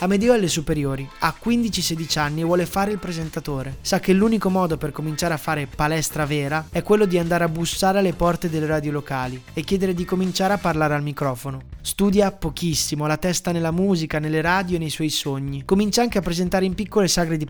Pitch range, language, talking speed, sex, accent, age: 150-185 Hz, Italian, 210 wpm, male, native, 20-39